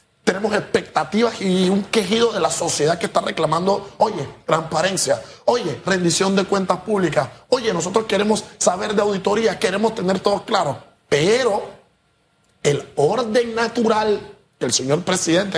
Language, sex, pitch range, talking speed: Spanish, male, 155-215 Hz, 140 wpm